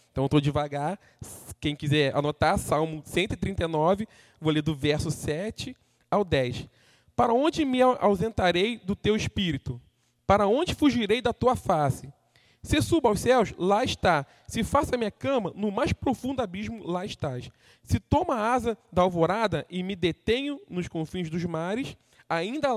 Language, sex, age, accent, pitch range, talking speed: Portuguese, male, 20-39, Brazilian, 140-225 Hz, 160 wpm